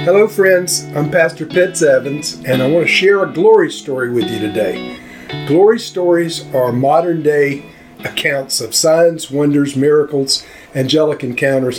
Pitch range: 130-170 Hz